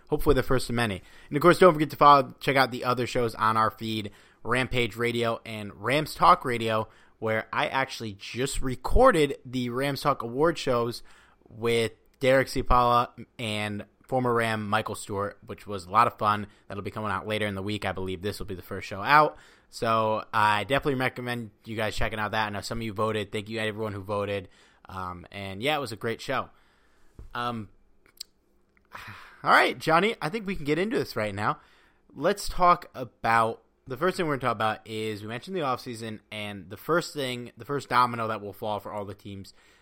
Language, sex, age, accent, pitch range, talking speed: English, male, 20-39, American, 105-130 Hz, 210 wpm